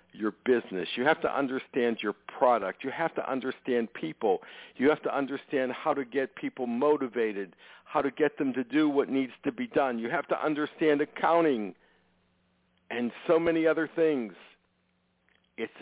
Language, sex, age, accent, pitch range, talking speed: English, male, 60-79, American, 100-140 Hz, 165 wpm